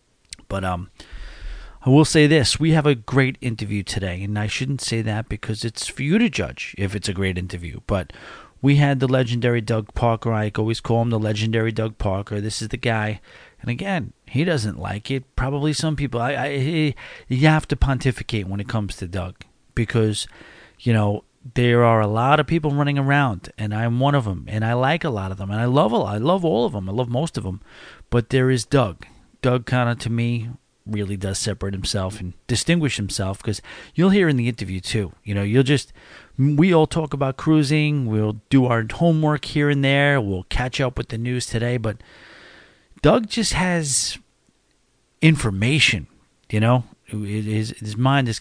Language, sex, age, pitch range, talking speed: English, male, 40-59, 105-140 Hz, 205 wpm